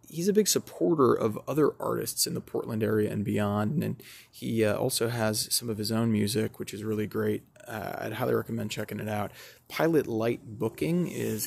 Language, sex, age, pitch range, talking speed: English, male, 20-39, 105-120 Hz, 200 wpm